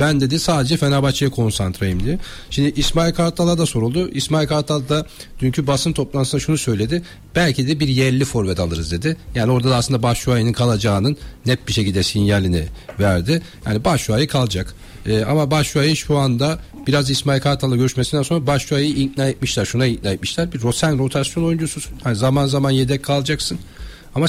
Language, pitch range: Turkish, 120-145 Hz